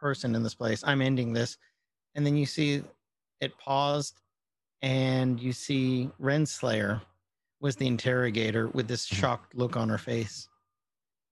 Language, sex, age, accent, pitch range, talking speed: English, male, 30-49, American, 125-150 Hz, 145 wpm